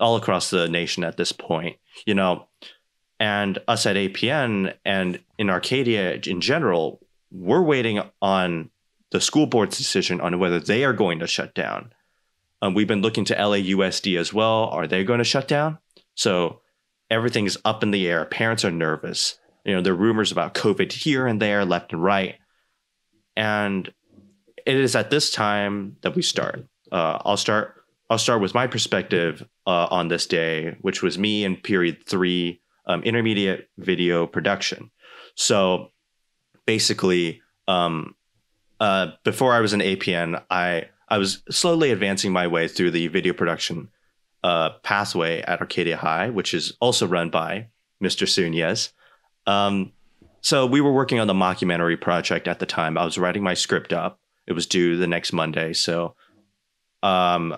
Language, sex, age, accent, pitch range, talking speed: English, male, 30-49, American, 90-110 Hz, 170 wpm